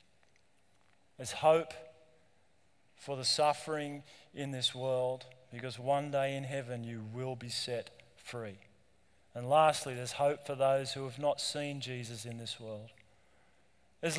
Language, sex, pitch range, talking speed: English, male, 130-160 Hz, 140 wpm